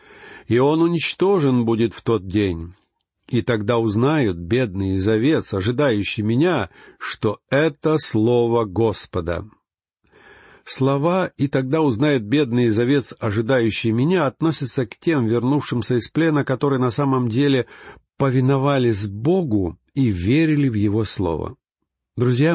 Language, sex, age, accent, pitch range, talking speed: Russian, male, 50-69, native, 105-145 Hz, 115 wpm